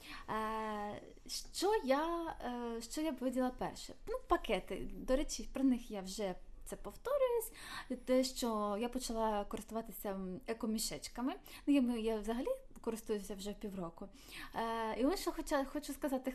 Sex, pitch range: female, 220-280 Hz